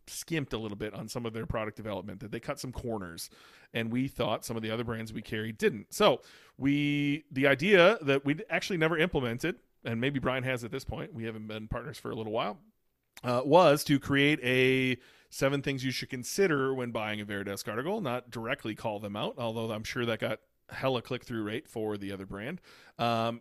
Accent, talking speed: American, 215 wpm